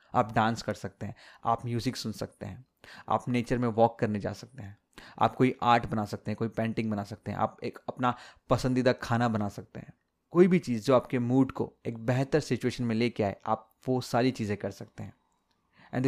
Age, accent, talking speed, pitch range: 30-49, native, 215 wpm, 110-130 Hz